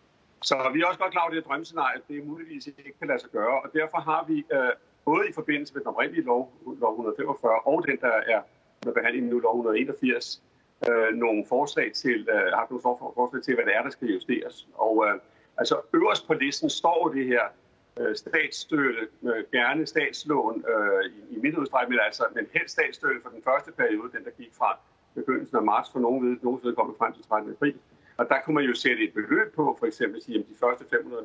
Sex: male